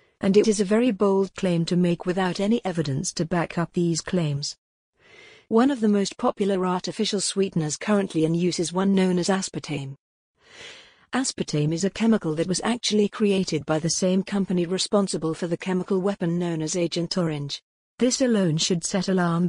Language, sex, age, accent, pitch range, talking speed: English, female, 50-69, British, 170-210 Hz, 180 wpm